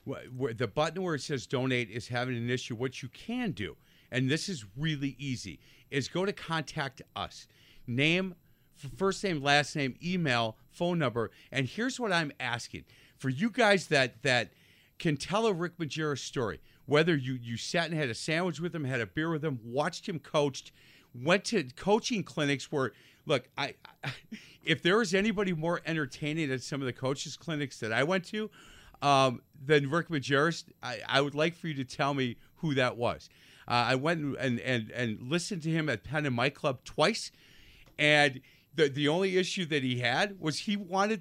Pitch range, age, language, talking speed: 130-180 Hz, 50-69, English, 195 wpm